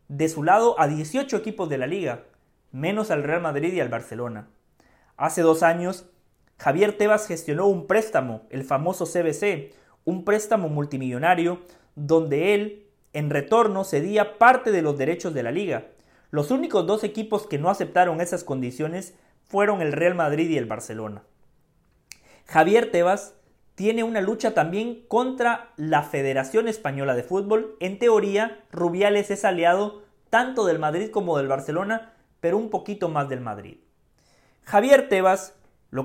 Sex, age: male, 30-49